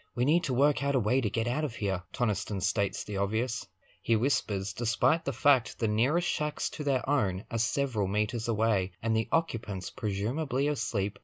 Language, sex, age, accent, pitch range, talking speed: English, male, 20-39, Australian, 110-160 Hz, 190 wpm